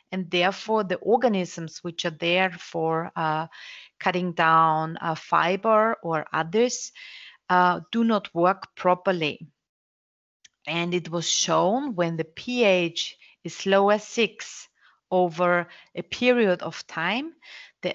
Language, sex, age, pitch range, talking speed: English, female, 30-49, 170-230 Hz, 120 wpm